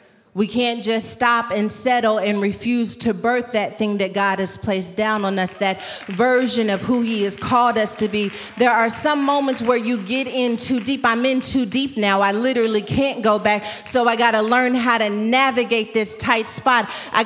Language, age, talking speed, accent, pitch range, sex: English, 30-49, 210 wpm, American, 225-275 Hz, female